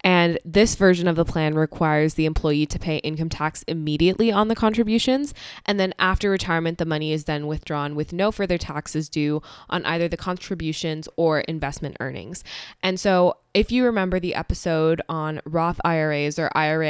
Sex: female